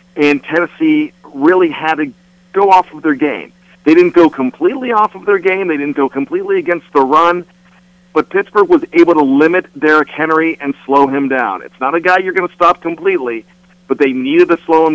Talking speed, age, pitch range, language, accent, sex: 210 wpm, 50-69, 145-180 Hz, English, American, male